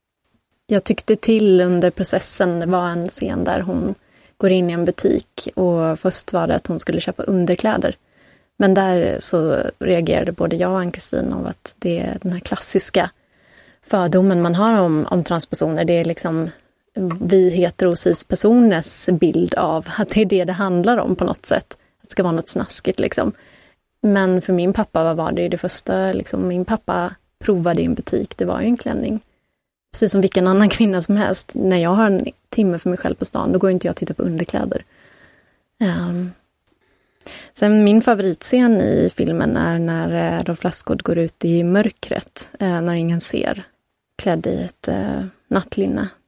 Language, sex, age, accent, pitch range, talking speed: Swedish, female, 30-49, native, 175-205 Hz, 175 wpm